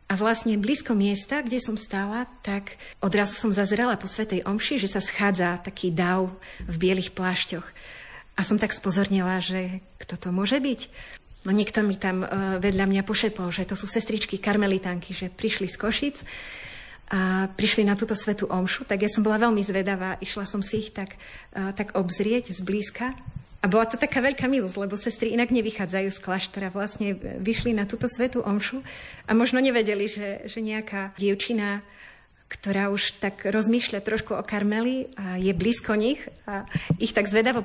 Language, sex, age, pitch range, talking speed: Slovak, female, 30-49, 195-225 Hz, 170 wpm